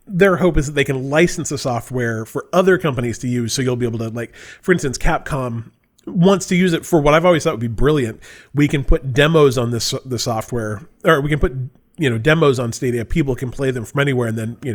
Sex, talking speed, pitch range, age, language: male, 250 wpm, 110-155 Hz, 30-49, English